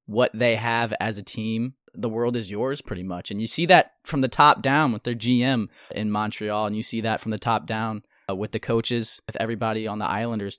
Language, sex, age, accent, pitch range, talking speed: English, male, 20-39, American, 110-135 Hz, 245 wpm